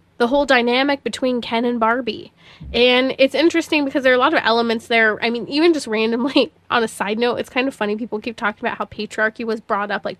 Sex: female